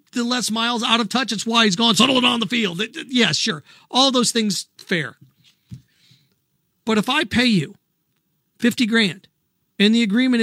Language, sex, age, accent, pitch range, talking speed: English, male, 40-59, American, 180-225 Hz, 175 wpm